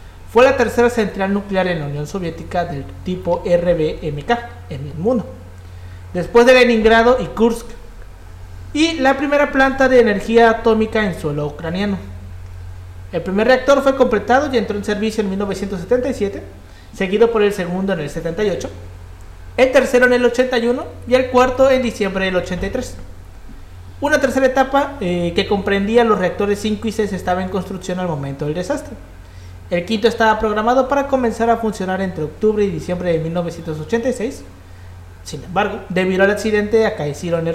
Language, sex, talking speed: Spanish, male, 160 wpm